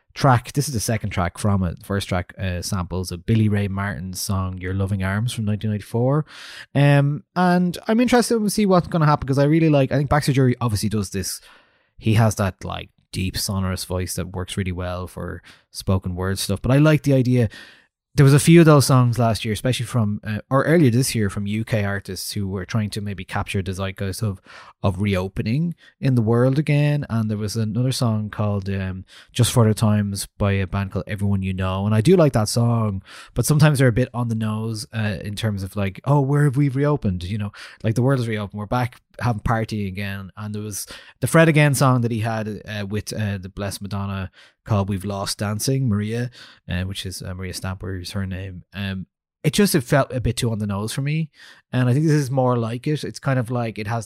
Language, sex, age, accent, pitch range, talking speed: English, male, 20-39, Irish, 100-130 Hz, 235 wpm